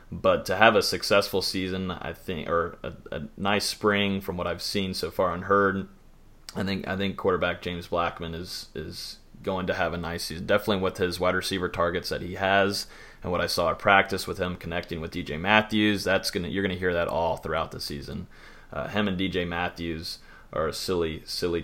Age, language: 30-49, English